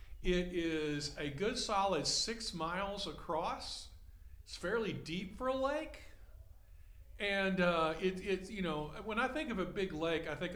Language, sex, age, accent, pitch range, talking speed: English, male, 50-69, American, 130-190 Hz, 165 wpm